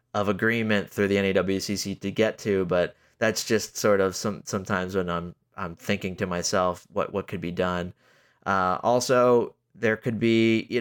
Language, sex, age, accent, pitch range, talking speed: English, male, 30-49, American, 90-110 Hz, 180 wpm